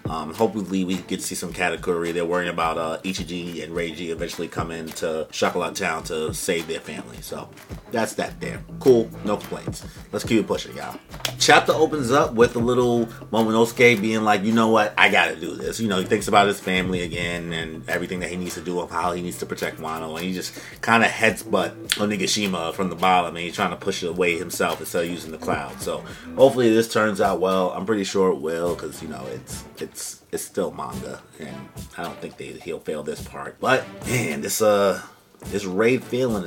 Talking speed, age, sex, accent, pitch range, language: 220 wpm, 30-49, male, American, 85-105 Hz, English